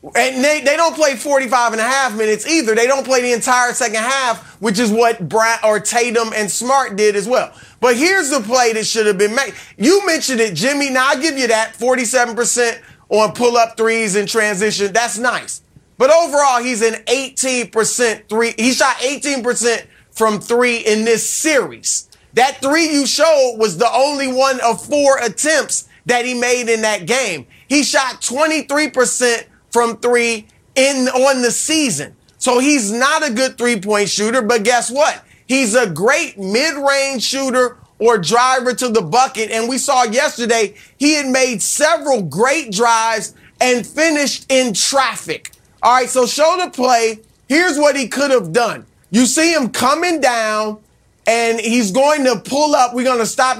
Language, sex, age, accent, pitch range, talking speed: English, male, 30-49, American, 225-275 Hz, 175 wpm